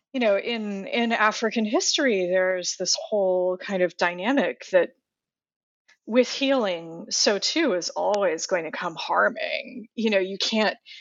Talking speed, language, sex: 145 wpm, English, female